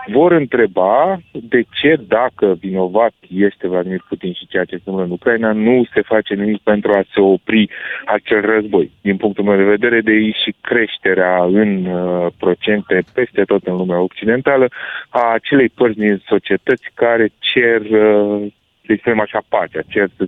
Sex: male